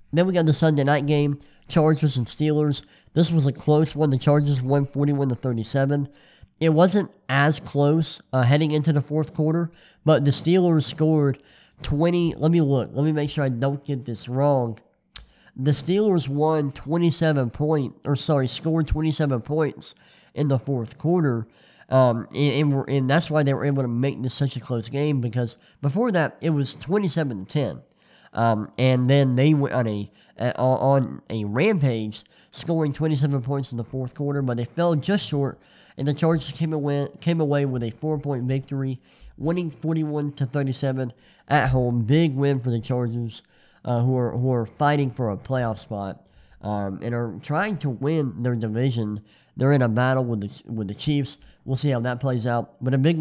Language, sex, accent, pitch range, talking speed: English, male, American, 125-155 Hz, 190 wpm